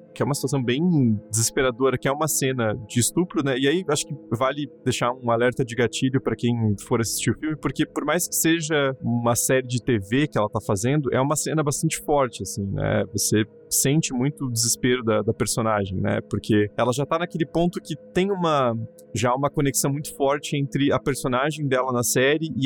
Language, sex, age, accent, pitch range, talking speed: Portuguese, male, 20-39, Brazilian, 120-155 Hz, 210 wpm